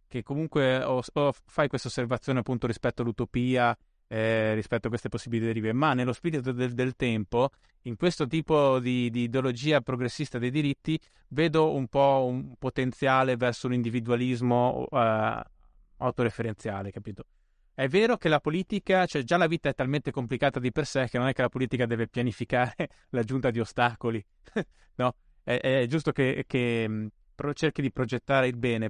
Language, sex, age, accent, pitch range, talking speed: Italian, male, 20-39, native, 120-145 Hz, 160 wpm